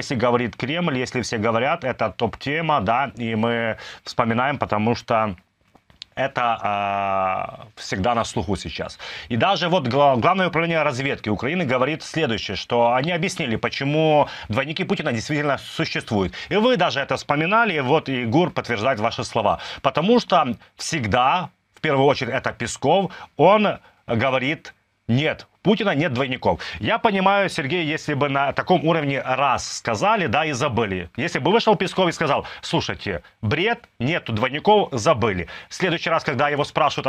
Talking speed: 150 wpm